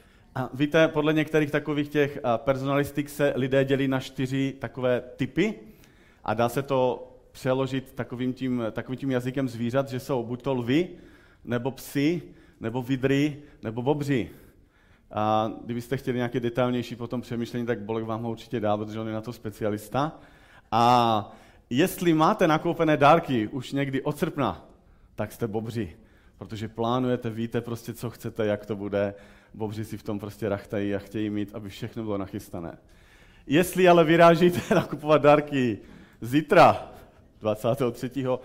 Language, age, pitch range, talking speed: Czech, 40-59, 105-135 Hz, 150 wpm